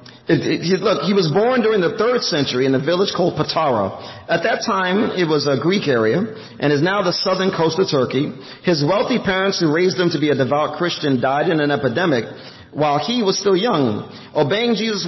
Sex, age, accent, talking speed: male, 40-59, American, 205 wpm